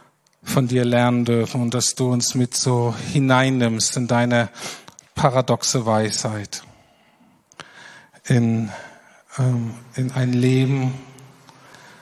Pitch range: 115-130 Hz